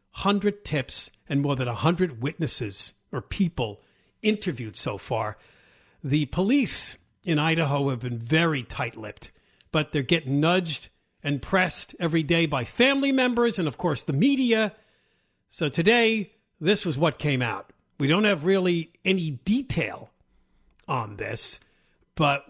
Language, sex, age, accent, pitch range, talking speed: English, male, 50-69, American, 140-210 Hz, 140 wpm